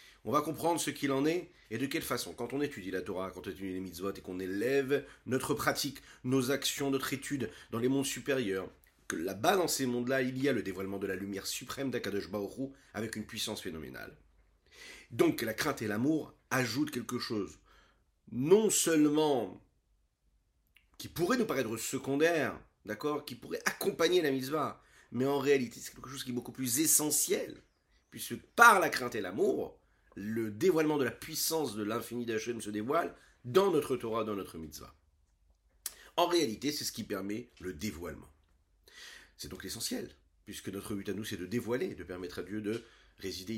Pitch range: 100-140 Hz